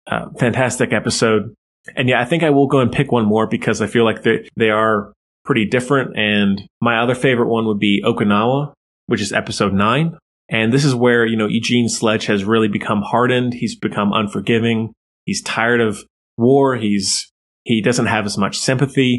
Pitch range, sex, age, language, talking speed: 105-120 Hz, male, 20-39, English, 190 wpm